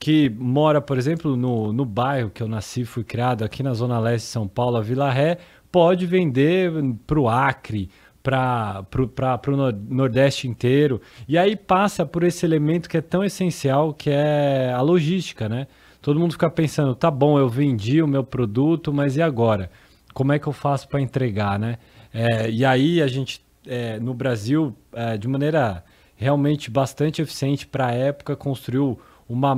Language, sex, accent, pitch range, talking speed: Portuguese, male, Brazilian, 120-150 Hz, 175 wpm